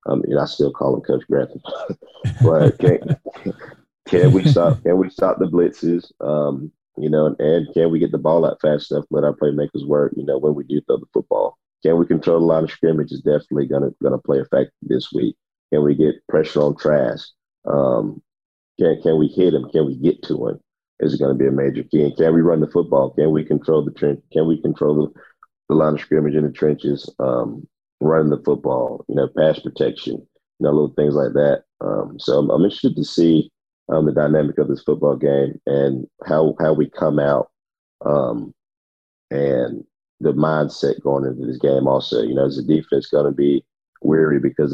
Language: English